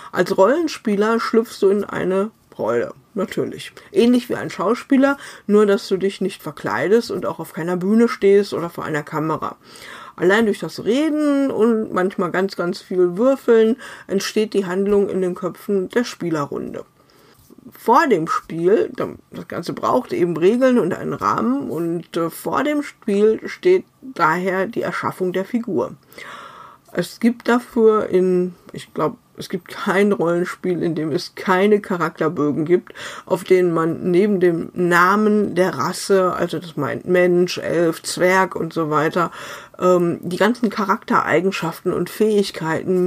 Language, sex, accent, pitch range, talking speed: German, female, German, 175-220 Hz, 145 wpm